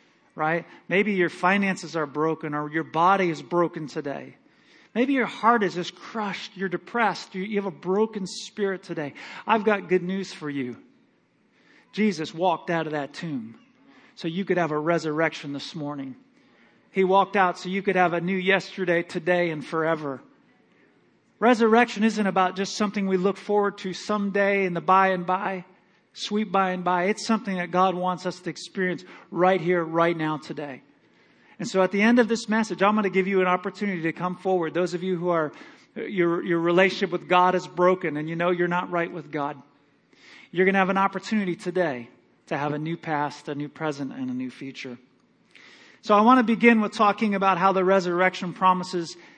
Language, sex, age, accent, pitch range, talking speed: English, male, 40-59, American, 165-200 Hz, 195 wpm